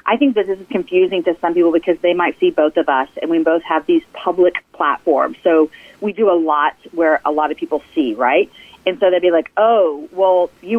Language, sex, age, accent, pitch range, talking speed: English, female, 30-49, American, 170-245 Hz, 240 wpm